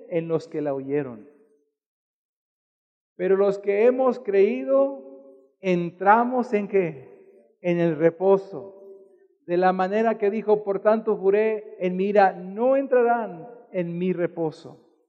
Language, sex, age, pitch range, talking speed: Portuguese, male, 50-69, 200-270 Hz, 125 wpm